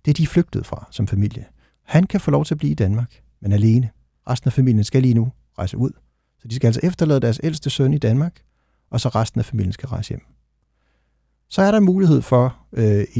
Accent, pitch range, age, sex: native, 105-135 Hz, 60-79, male